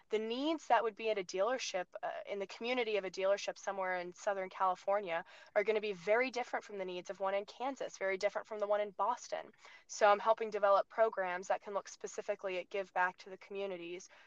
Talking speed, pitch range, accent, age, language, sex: 225 wpm, 185-220 Hz, American, 10-29, English, female